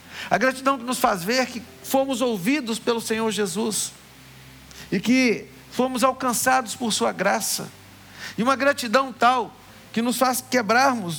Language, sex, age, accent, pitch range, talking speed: Portuguese, male, 50-69, Brazilian, 175-235 Hz, 145 wpm